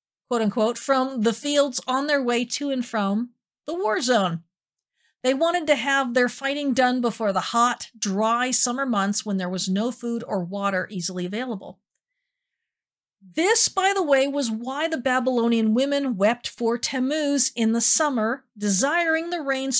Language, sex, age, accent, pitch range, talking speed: English, female, 50-69, American, 220-290 Hz, 165 wpm